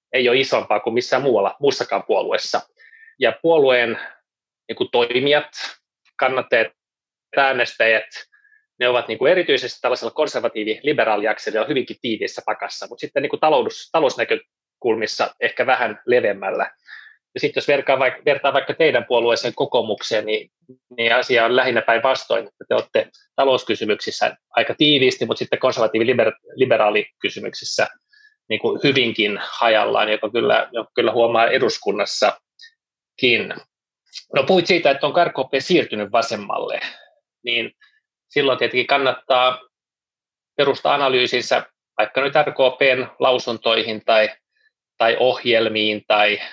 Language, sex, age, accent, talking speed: Finnish, male, 20-39, native, 110 wpm